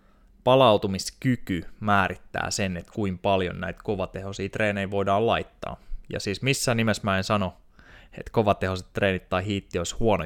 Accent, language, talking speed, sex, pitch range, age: native, Finnish, 145 wpm, male, 95-110 Hz, 20-39